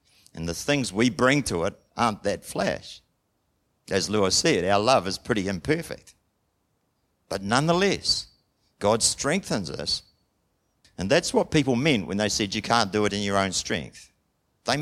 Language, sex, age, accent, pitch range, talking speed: English, male, 50-69, Australian, 100-150 Hz, 160 wpm